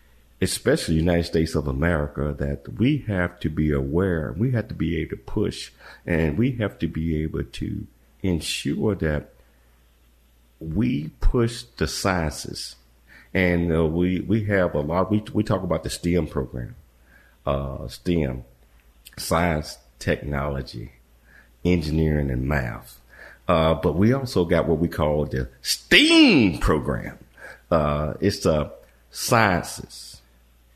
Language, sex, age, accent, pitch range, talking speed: English, male, 50-69, American, 65-90 Hz, 135 wpm